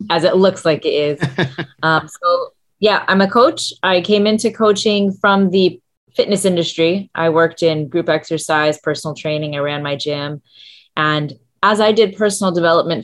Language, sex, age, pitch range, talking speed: English, female, 20-39, 150-180 Hz, 170 wpm